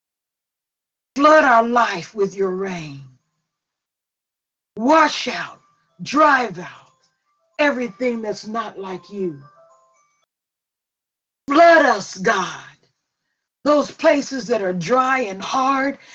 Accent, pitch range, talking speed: American, 175-260 Hz, 95 wpm